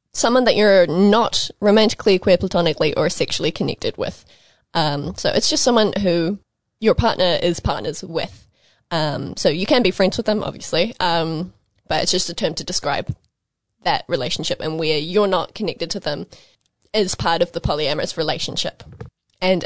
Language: English